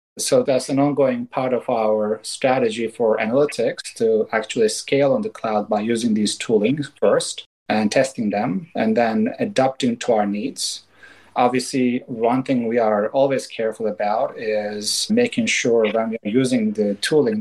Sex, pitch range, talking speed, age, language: male, 110-140 Hz, 160 wpm, 30-49, German